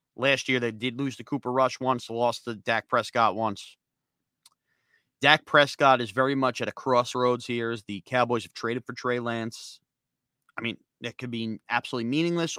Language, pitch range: English, 105-130 Hz